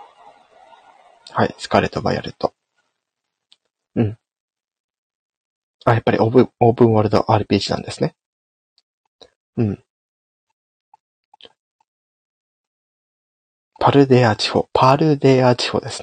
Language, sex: Japanese, male